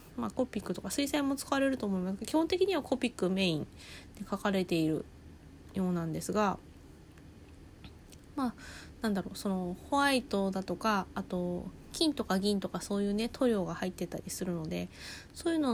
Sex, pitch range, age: female, 175-225 Hz, 20-39